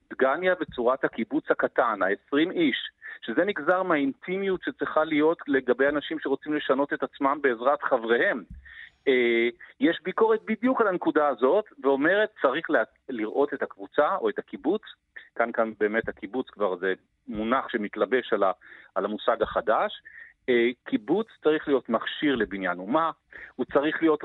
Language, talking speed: Hebrew, 140 wpm